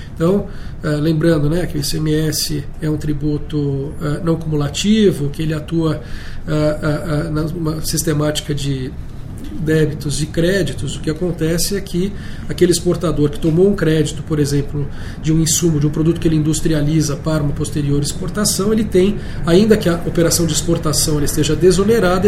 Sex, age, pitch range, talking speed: male, 40-59, 150-175 Hz, 150 wpm